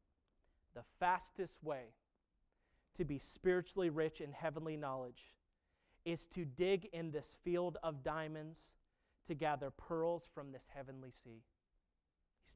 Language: English